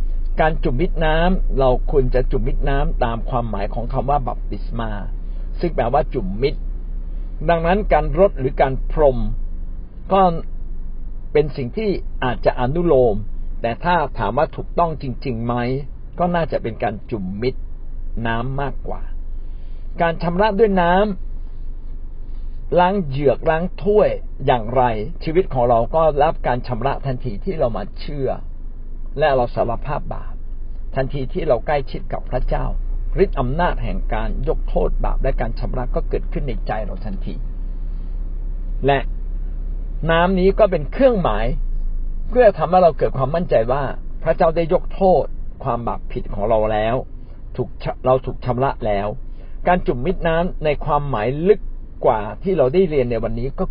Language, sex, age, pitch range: Thai, male, 60-79, 105-165 Hz